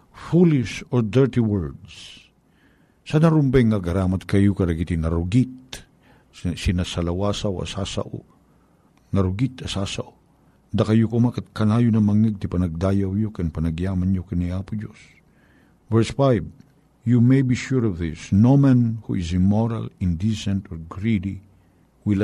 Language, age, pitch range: Filipino, 50-69, 95-120 Hz